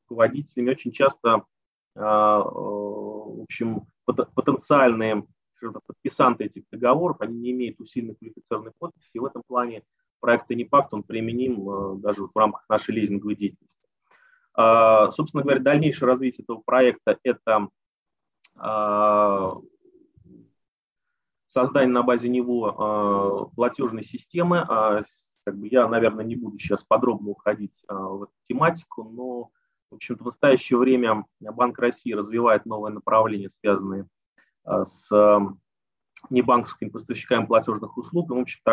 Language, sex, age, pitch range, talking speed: Russian, male, 30-49, 105-125 Hz, 115 wpm